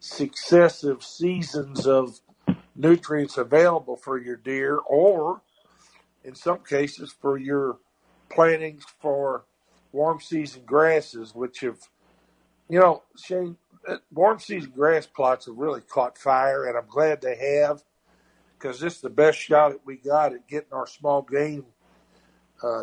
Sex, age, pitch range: male, 50-69, 130-160 Hz